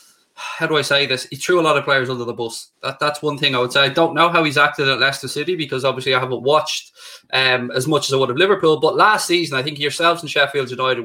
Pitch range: 130-170 Hz